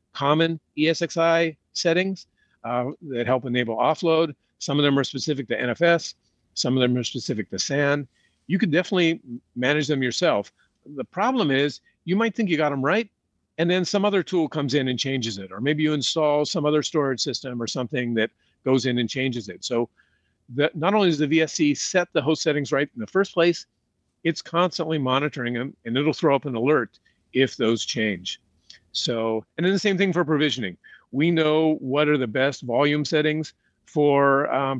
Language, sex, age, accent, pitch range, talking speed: English, male, 50-69, American, 125-165 Hz, 190 wpm